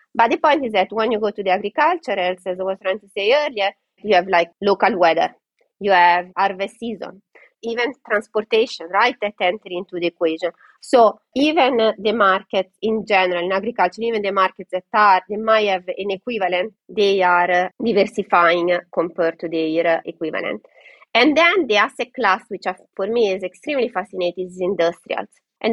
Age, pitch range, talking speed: 30-49, 180-230 Hz, 175 wpm